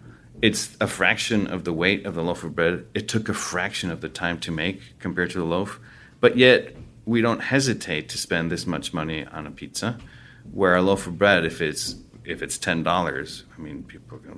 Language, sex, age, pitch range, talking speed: English, male, 30-49, 85-105 Hz, 215 wpm